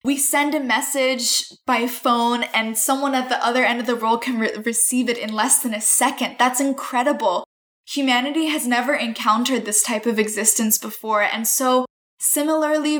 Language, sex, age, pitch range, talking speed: English, female, 10-29, 220-255 Hz, 170 wpm